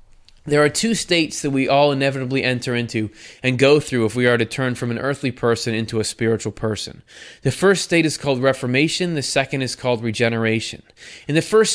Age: 20-39